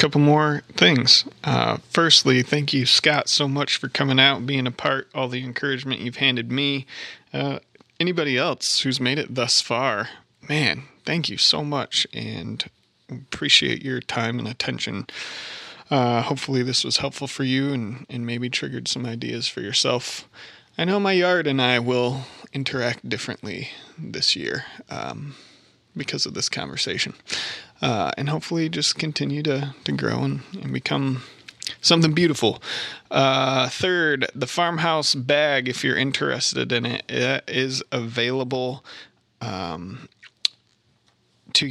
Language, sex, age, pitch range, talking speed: English, male, 30-49, 125-150 Hz, 145 wpm